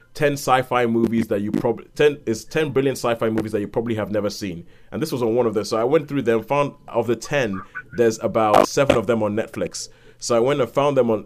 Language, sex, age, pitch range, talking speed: English, male, 30-49, 105-135 Hz, 255 wpm